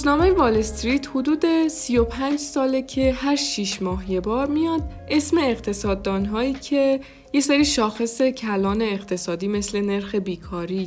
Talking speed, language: 130 wpm, Persian